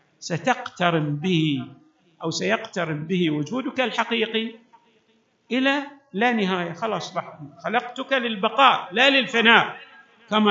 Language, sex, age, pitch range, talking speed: Arabic, male, 50-69, 165-245 Hz, 90 wpm